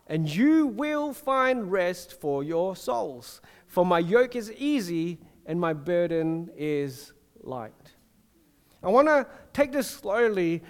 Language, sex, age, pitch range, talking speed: English, male, 40-59, 165-230 Hz, 135 wpm